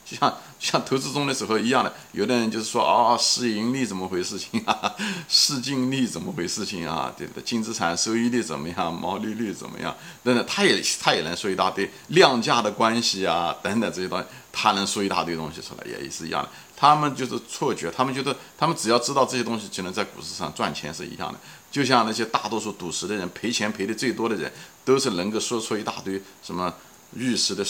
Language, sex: Chinese, male